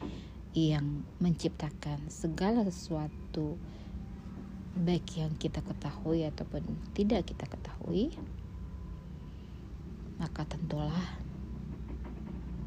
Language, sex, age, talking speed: Indonesian, female, 30-49, 65 wpm